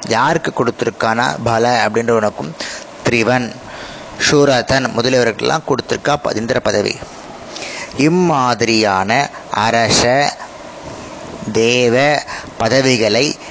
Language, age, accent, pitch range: Tamil, 30-49, native, 115-145 Hz